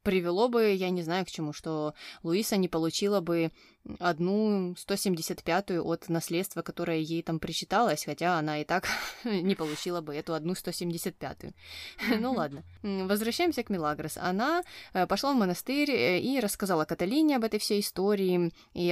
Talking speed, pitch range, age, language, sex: 150 wpm, 165-205 Hz, 20-39, Russian, female